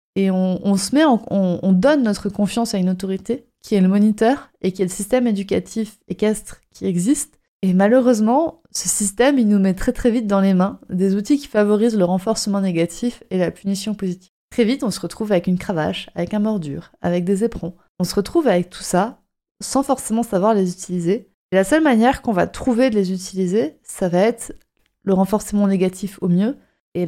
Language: French